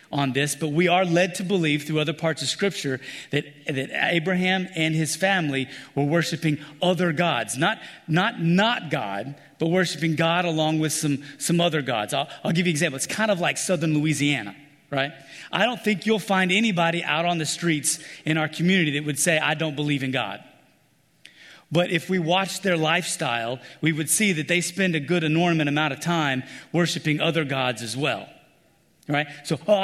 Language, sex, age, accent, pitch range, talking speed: English, male, 30-49, American, 135-170 Hz, 195 wpm